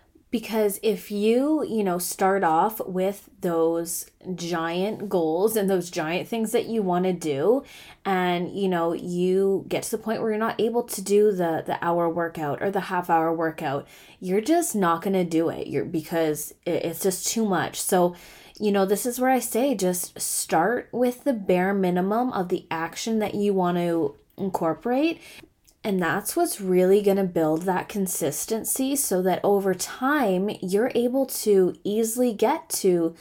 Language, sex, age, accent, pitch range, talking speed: English, female, 20-39, American, 170-210 Hz, 175 wpm